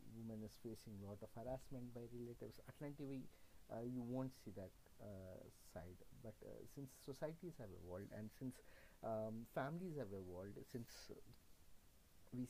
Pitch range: 100-130 Hz